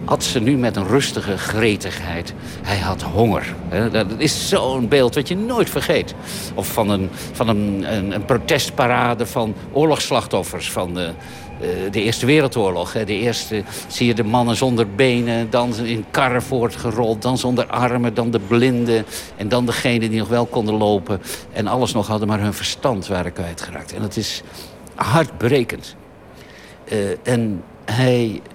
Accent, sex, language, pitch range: Dutch, male, Dutch, 105-140 Hz